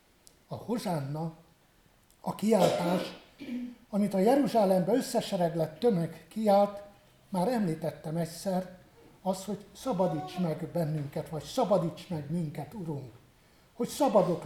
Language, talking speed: Hungarian, 105 wpm